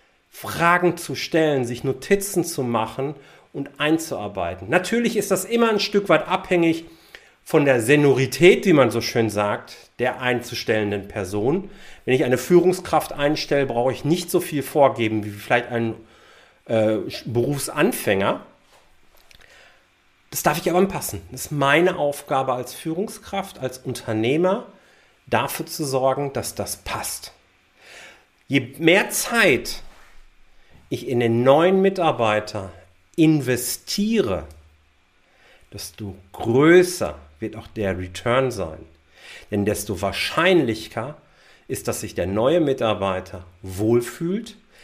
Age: 40-59